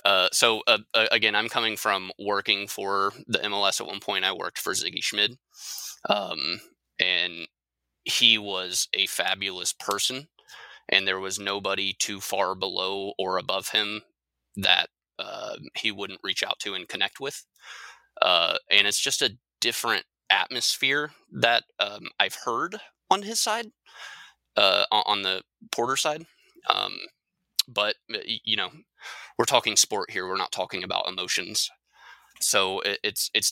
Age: 20-39